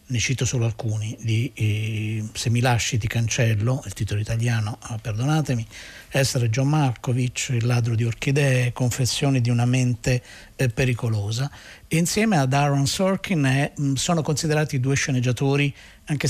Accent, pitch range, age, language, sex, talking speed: native, 115-140 Hz, 50-69, Italian, male, 130 wpm